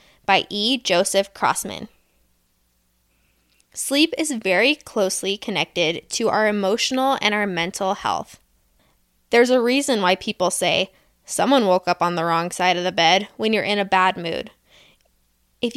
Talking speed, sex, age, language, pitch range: 150 wpm, female, 10-29, English, 185-240 Hz